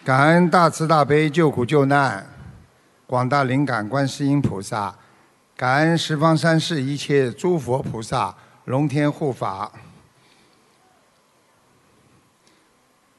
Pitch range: 135-160 Hz